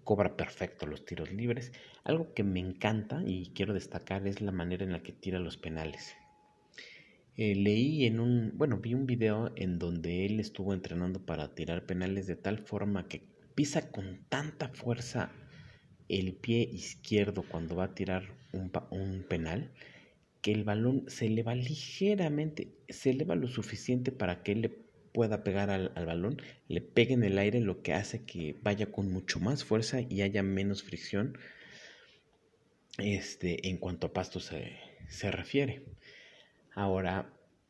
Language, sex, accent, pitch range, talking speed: Spanish, male, Mexican, 90-115 Hz, 160 wpm